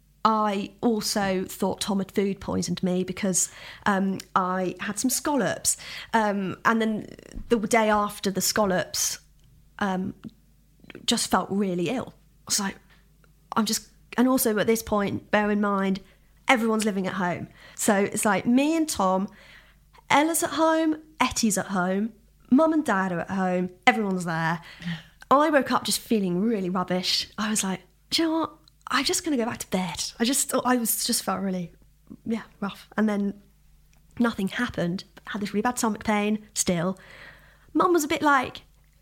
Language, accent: English, British